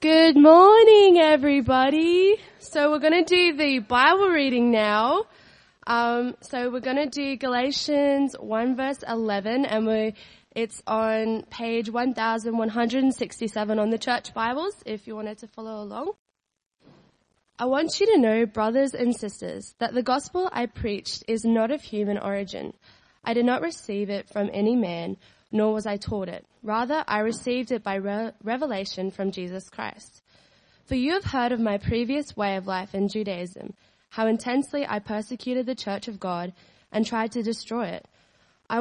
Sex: female